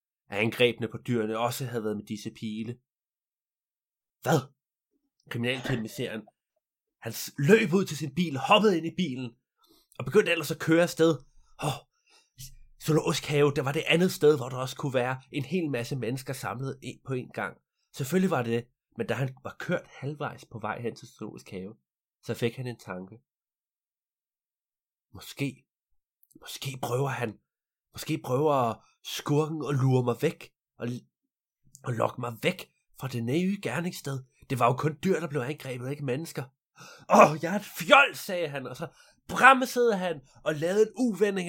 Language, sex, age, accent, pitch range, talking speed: Danish, male, 30-49, native, 130-195 Hz, 170 wpm